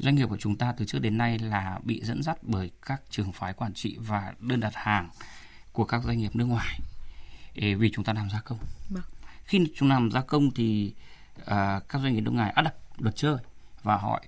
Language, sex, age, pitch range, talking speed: Vietnamese, male, 20-39, 105-135 Hz, 225 wpm